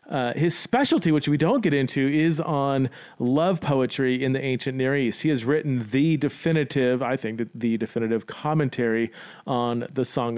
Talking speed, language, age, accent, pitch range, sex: 175 wpm, English, 40-59, American, 120-150 Hz, male